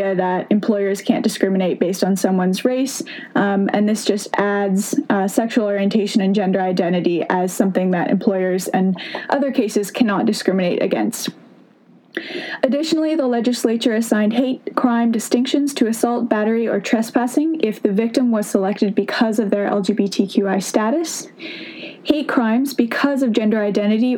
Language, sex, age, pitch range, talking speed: English, female, 10-29, 210-255 Hz, 140 wpm